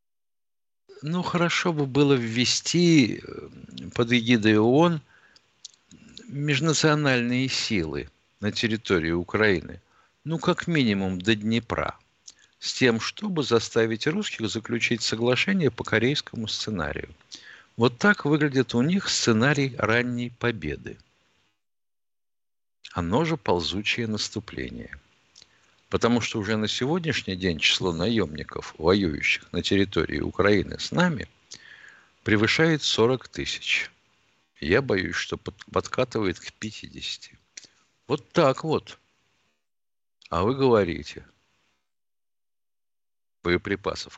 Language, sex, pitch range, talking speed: Russian, male, 105-135 Hz, 95 wpm